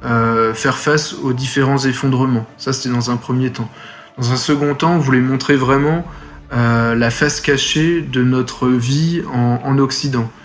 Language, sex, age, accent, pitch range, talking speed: French, male, 20-39, French, 120-140 Hz, 170 wpm